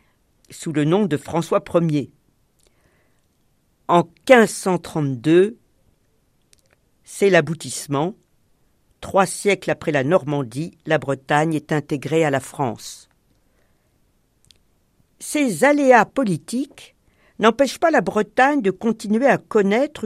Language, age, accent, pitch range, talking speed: French, 50-69, French, 150-230 Hz, 100 wpm